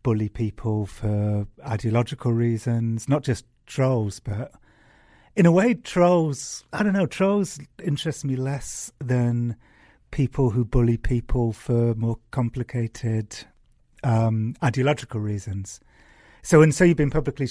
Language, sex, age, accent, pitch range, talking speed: English, male, 40-59, British, 110-130 Hz, 135 wpm